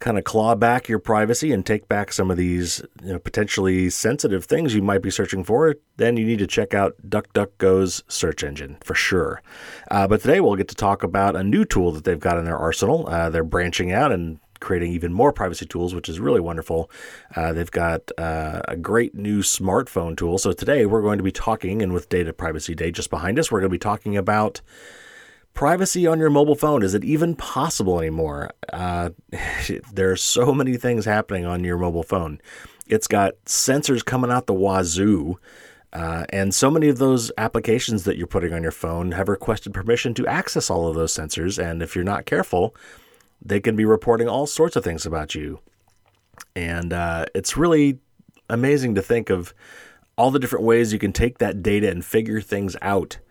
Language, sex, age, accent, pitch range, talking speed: English, male, 30-49, American, 85-115 Hz, 200 wpm